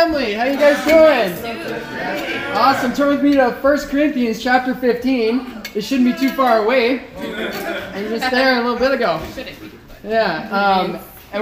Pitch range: 200-265 Hz